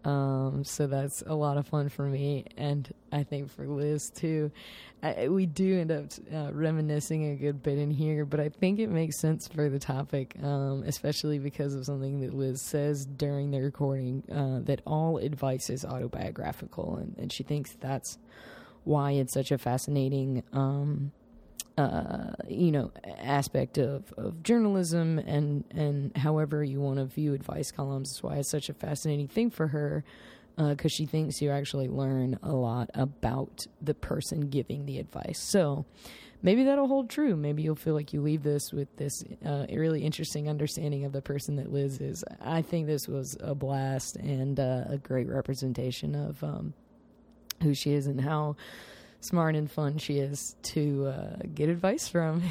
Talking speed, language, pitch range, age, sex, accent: 175 wpm, English, 135-155 Hz, 20-39, female, American